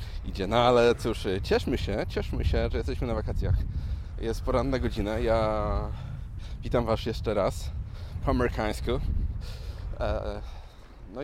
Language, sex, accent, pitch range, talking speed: Polish, male, native, 95-115 Hz, 125 wpm